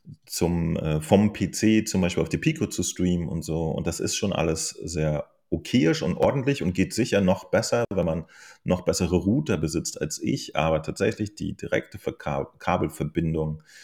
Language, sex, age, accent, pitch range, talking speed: German, male, 30-49, German, 75-90 Hz, 175 wpm